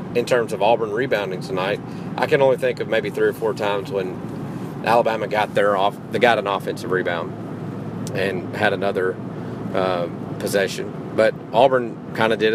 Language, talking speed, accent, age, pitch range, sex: English, 170 wpm, American, 40-59, 120-155 Hz, male